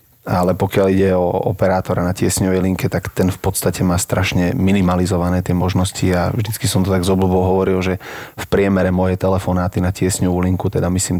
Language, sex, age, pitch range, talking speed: Slovak, male, 30-49, 90-95 Hz, 190 wpm